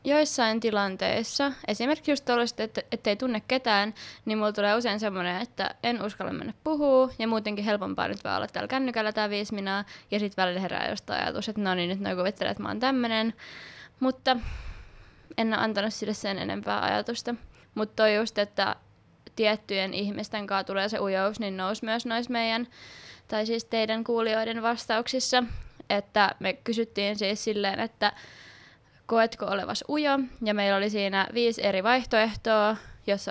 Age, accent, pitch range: 20-39, native, 205-235 Hz